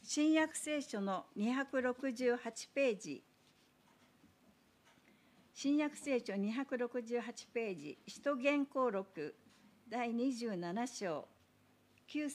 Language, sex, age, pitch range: Japanese, female, 60-79, 205-270 Hz